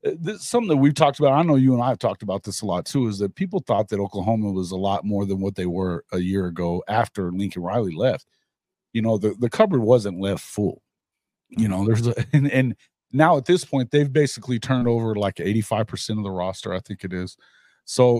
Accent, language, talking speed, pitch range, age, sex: American, English, 230 wpm, 105-130 Hz, 40-59, male